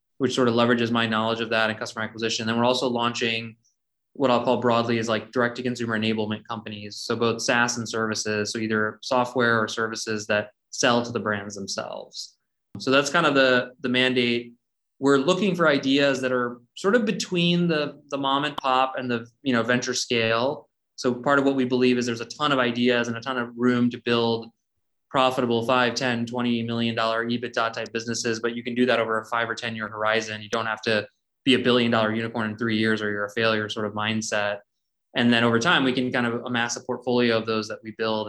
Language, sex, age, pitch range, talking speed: English, male, 20-39, 110-125 Hz, 220 wpm